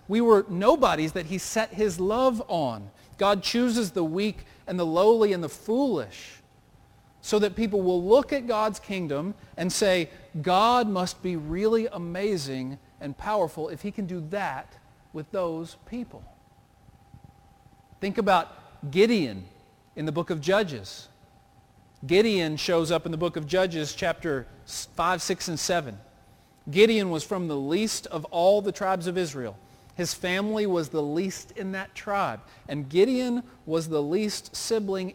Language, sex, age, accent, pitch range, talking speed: English, male, 40-59, American, 150-205 Hz, 155 wpm